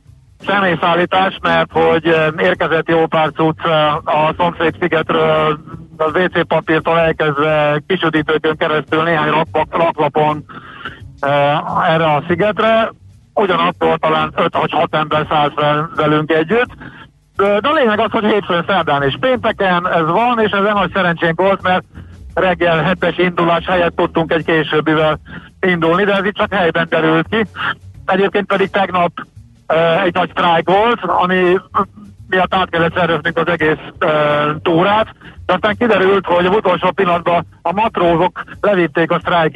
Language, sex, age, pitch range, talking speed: Hungarian, male, 50-69, 155-185 Hz, 135 wpm